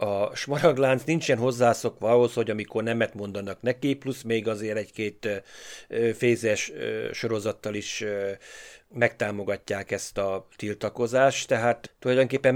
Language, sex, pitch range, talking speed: Hungarian, male, 105-130 Hz, 125 wpm